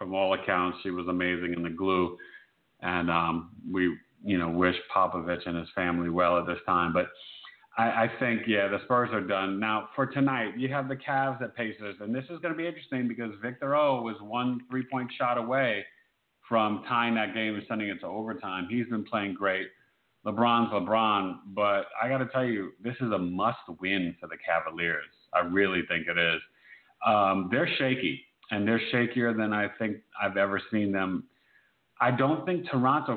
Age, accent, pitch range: 40-59, American, 95-120 Hz